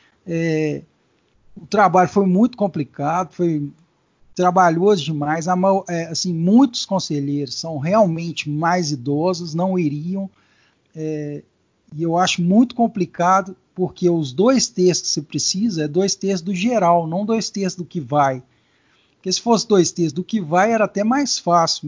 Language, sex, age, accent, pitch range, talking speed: Portuguese, male, 50-69, Brazilian, 160-205 Hz, 155 wpm